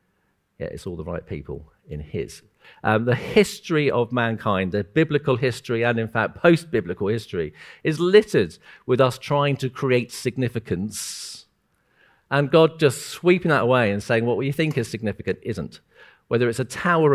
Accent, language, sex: British, English, male